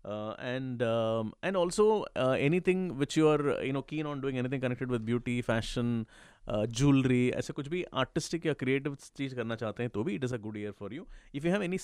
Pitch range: 125-160 Hz